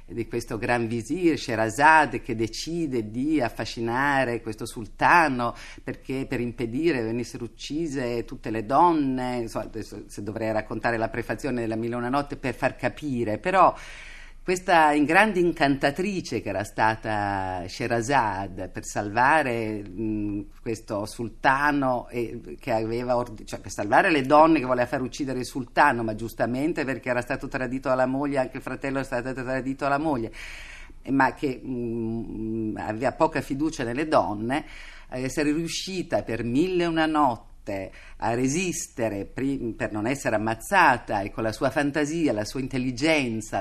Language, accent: Italian, native